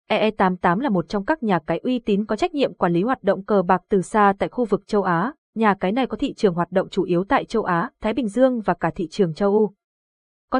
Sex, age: female, 20-39